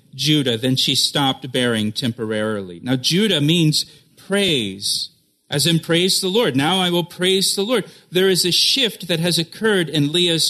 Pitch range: 150-190 Hz